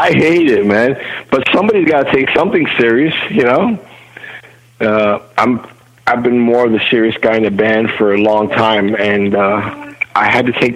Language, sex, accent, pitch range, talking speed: English, male, American, 100-120 Hz, 190 wpm